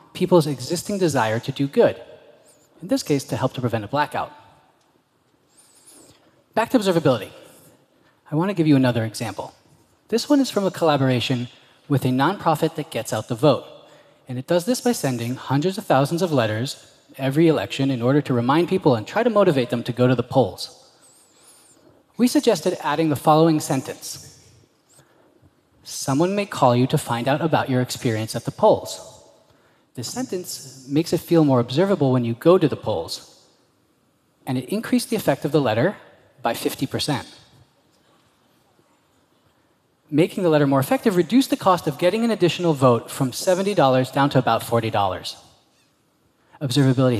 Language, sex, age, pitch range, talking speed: Arabic, male, 30-49, 125-170 Hz, 165 wpm